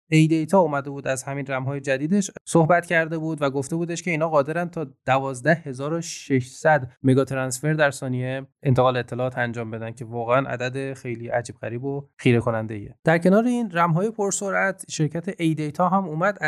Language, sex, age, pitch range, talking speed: Persian, male, 20-39, 120-160 Hz, 170 wpm